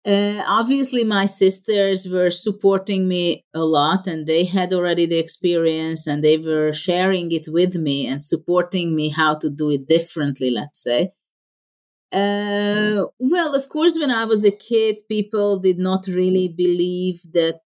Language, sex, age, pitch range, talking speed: English, female, 30-49, 155-205 Hz, 160 wpm